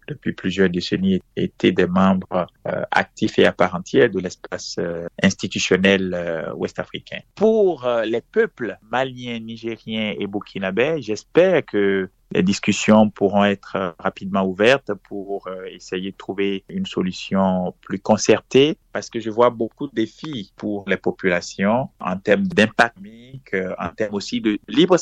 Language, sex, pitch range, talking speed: French, male, 95-130 Hz, 150 wpm